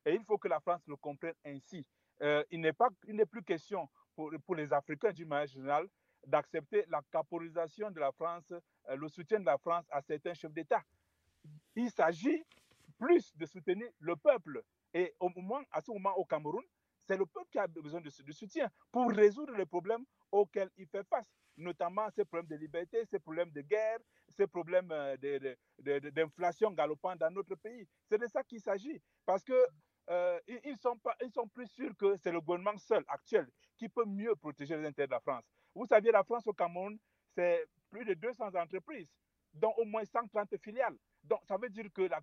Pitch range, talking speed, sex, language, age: 160-220 Hz, 205 wpm, male, French, 50-69